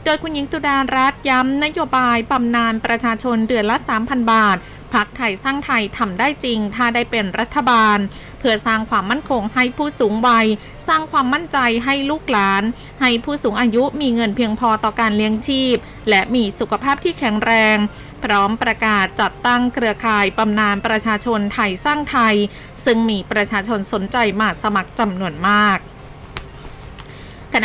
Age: 20-39